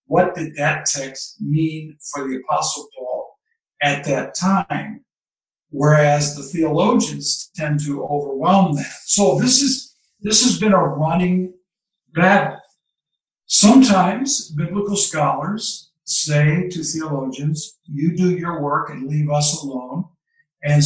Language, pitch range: English, 145-185 Hz